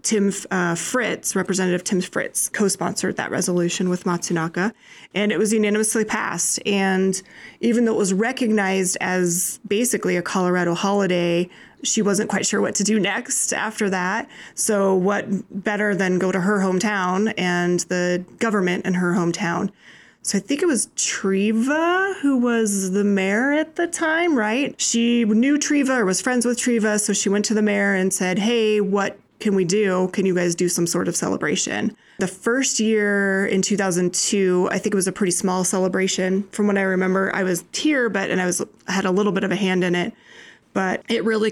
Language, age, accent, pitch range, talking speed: English, 30-49, American, 190-220 Hz, 190 wpm